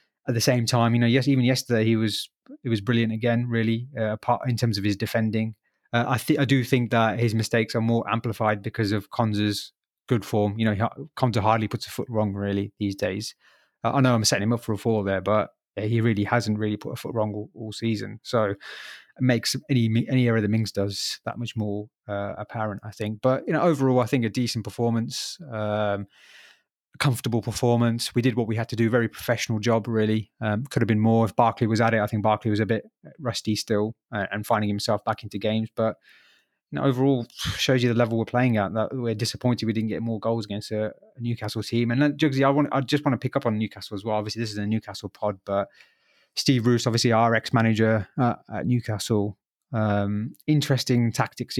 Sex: male